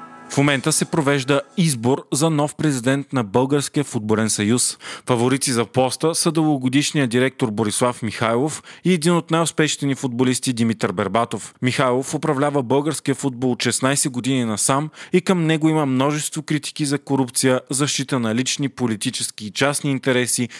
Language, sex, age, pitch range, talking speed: Bulgarian, male, 30-49, 120-145 Hz, 145 wpm